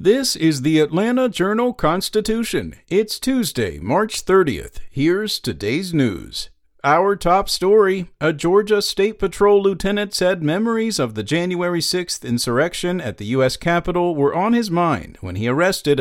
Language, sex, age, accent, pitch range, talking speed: English, male, 50-69, American, 135-190 Hz, 140 wpm